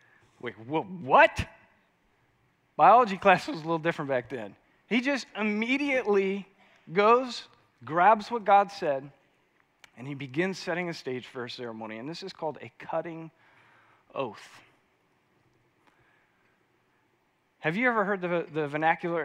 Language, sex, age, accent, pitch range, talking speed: English, male, 40-59, American, 135-180 Hz, 130 wpm